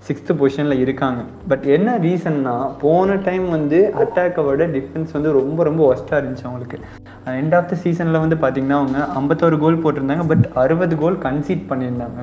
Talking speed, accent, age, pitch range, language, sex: 155 wpm, native, 20-39, 130-155 Hz, Tamil, male